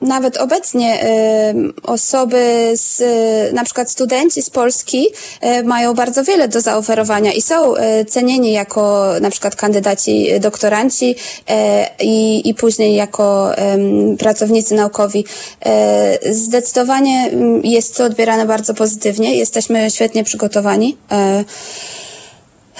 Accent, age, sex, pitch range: native, 20-39, female, 215-250 Hz